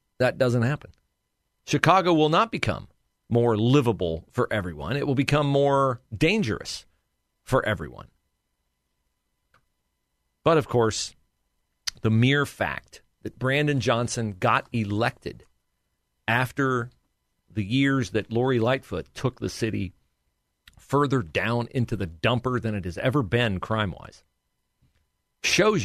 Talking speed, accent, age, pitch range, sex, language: 115 wpm, American, 40-59, 80-130 Hz, male, English